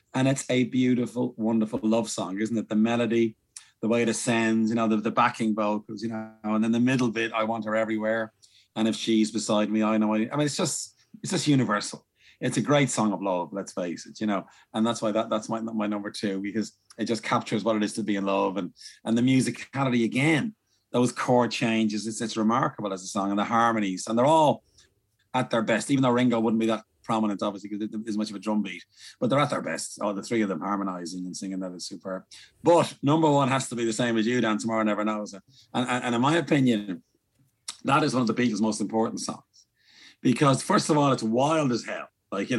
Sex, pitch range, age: male, 105-125 Hz, 30-49